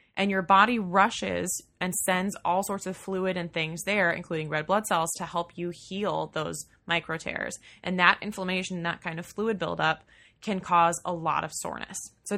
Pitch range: 165-195 Hz